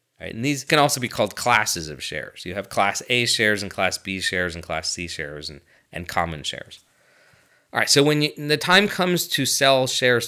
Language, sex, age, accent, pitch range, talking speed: English, male, 30-49, American, 95-120 Hz, 215 wpm